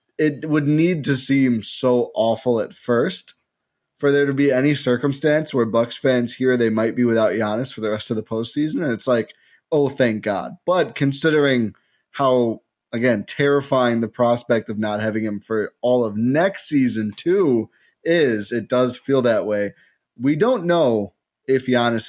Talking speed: 175 wpm